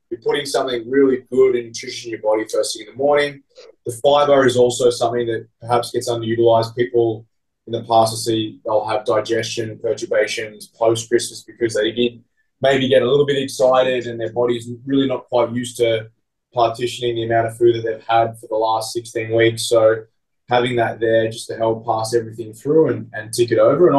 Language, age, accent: English, 20-39, Australian